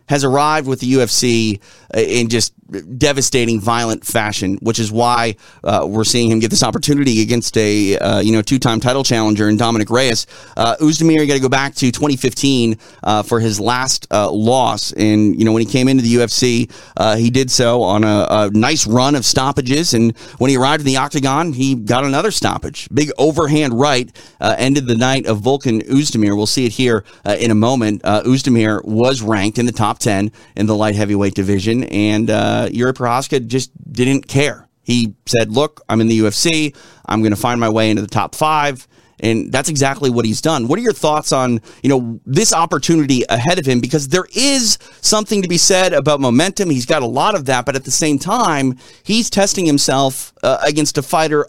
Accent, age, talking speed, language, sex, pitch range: American, 30-49, 205 wpm, English, male, 110-140 Hz